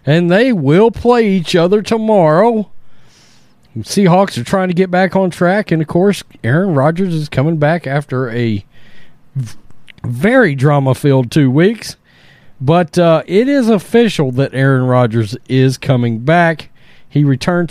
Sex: male